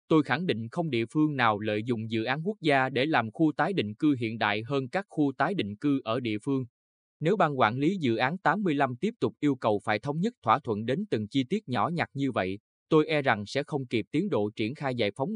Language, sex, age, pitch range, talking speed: Vietnamese, male, 20-39, 110-155 Hz, 260 wpm